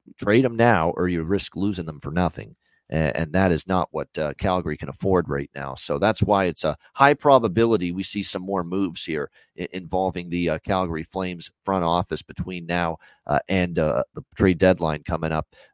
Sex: male